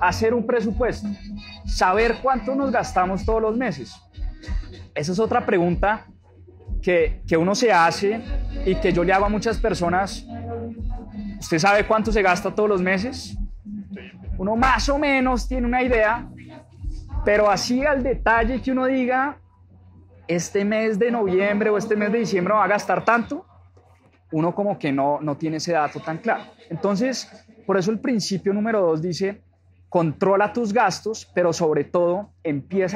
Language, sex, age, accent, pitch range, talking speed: English, male, 20-39, Colombian, 160-230 Hz, 160 wpm